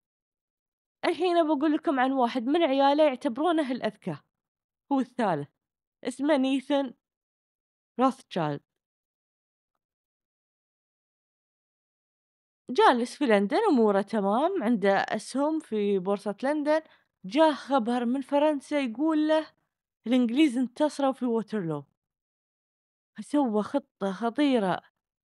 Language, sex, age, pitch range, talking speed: Arabic, female, 20-39, 215-300 Hz, 90 wpm